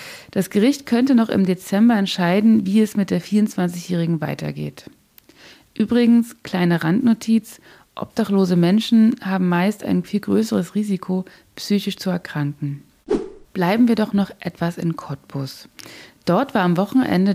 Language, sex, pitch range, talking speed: German, female, 165-210 Hz, 130 wpm